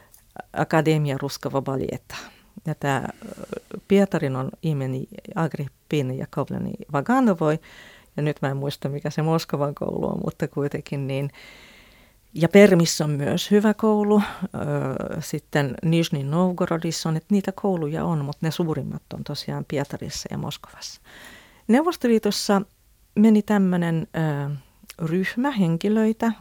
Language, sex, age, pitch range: Finnish, female, 40-59, 150-195 Hz